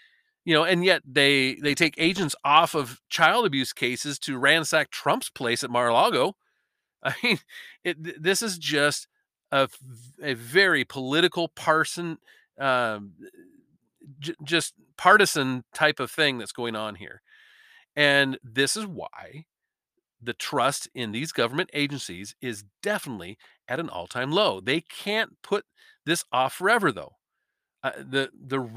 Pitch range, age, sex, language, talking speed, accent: 120-175 Hz, 40-59, male, English, 140 wpm, American